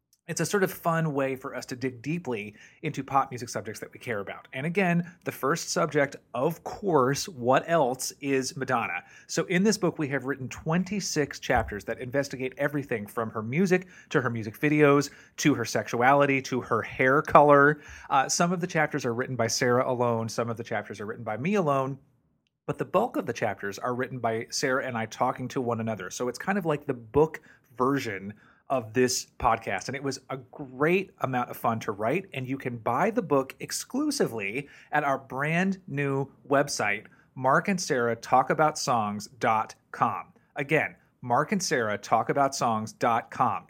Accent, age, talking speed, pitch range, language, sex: American, 30-49, 190 wpm, 125-155 Hz, English, male